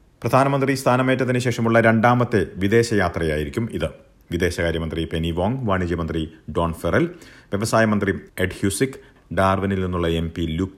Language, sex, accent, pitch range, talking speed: Malayalam, male, native, 85-110 Hz, 110 wpm